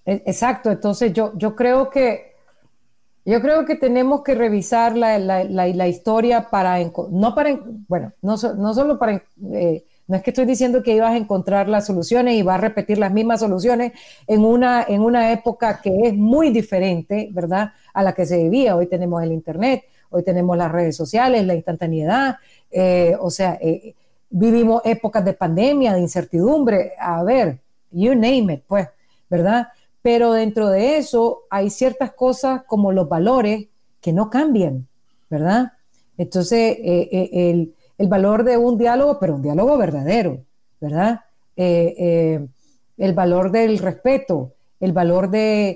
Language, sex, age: Spanish, female, 40-59